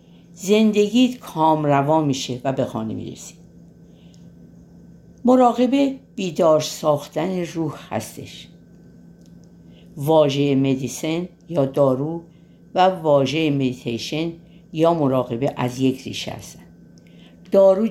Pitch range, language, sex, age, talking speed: 120-170 Hz, Persian, female, 50-69, 90 wpm